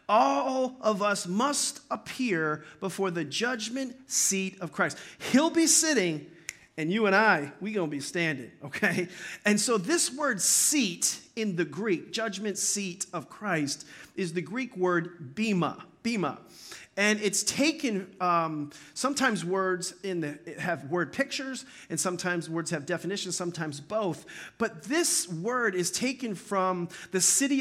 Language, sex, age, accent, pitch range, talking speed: English, male, 40-59, American, 170-220 Hz, 145 wpm